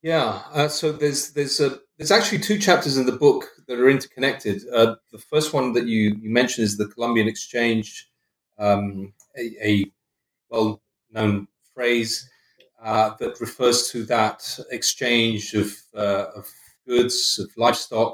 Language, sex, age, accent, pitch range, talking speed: English, male, 30-49, British, 100-125 Hz, 150 wpm